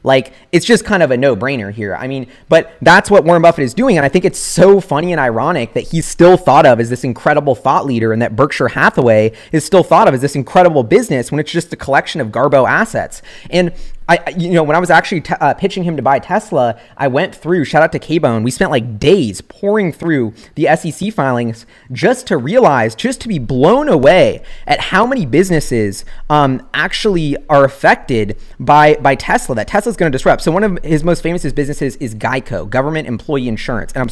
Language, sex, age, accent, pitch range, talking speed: English, male, 30-49, American, 125-170 Hz, 220 wpm